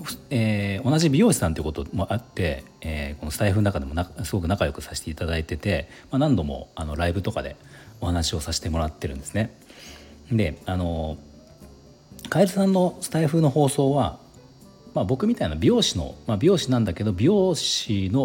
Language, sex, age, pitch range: Japanese, male, 40-59, 75-115 Hz